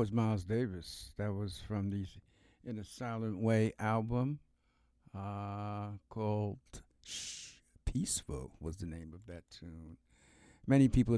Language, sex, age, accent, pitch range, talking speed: English, male, 60-79, American, 95-115 Hz, 125 wpm